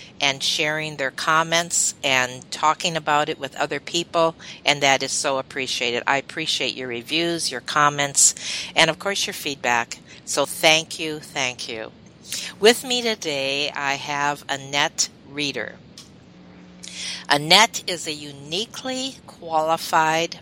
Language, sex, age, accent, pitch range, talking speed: English, female, 50-69, American, 140-175 Hz, 130 wpm